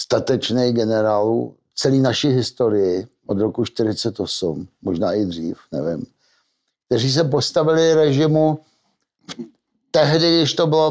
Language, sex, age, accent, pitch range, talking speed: Czech, male, 60-79, native, 125-155 Hz, 110 wpm